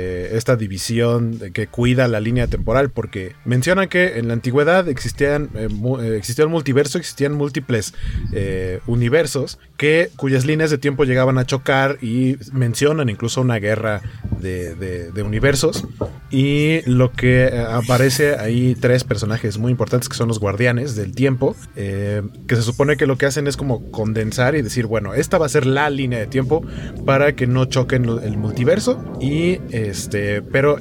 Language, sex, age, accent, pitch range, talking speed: Spanish, male, 30-49, Mexican, 110-140 Hz, 165 wpm